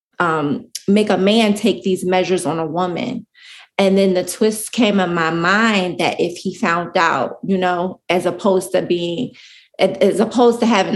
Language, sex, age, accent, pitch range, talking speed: English, female, 20-39, American, 180-200 Hz, 180 wpm